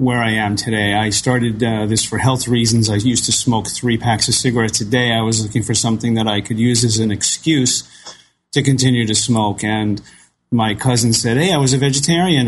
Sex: male